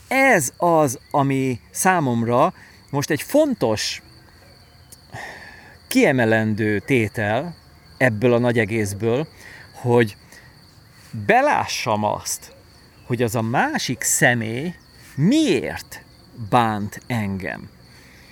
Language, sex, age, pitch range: Hungarian, male, 40-59, 110-150 Hz